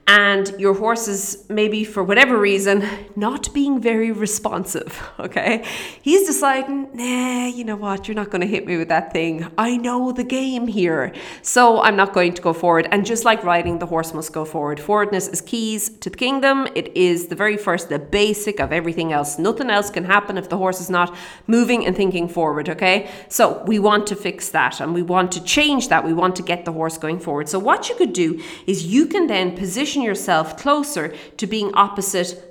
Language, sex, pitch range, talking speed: English, female, 175-225 Hz, 210 wpm